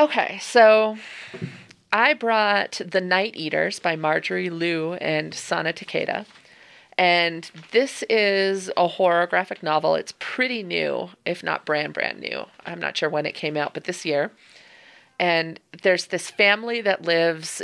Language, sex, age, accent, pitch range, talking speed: English, female, 30-49, American, 155-190 Hz, 150 wpm